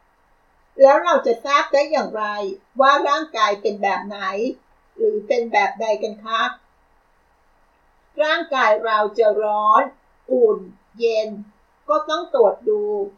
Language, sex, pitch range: Thai, female, 220-290 Hz